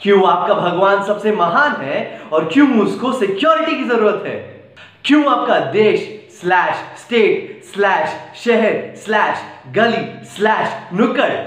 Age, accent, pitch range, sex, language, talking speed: 20-39, native, 200-300 Hz, male, Hindi, 125 wpm